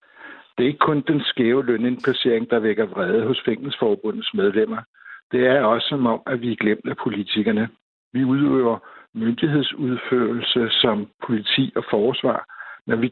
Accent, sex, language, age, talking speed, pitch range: native, male, Danish, 60-79, 150 wpm, 115-140 Hz